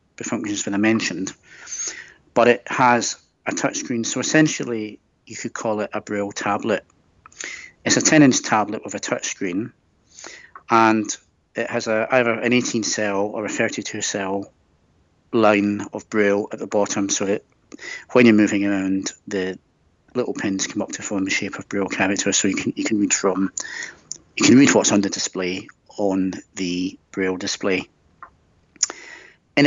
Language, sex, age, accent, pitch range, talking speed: English, male, 40-59, British, 100-115 Hz, 160 wpm